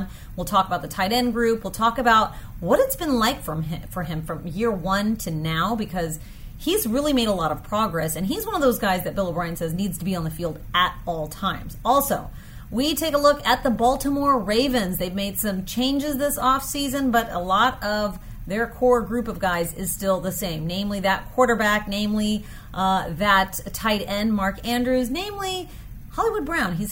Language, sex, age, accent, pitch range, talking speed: English, female, 30-49, American, 185-255 Hz, 200 wpm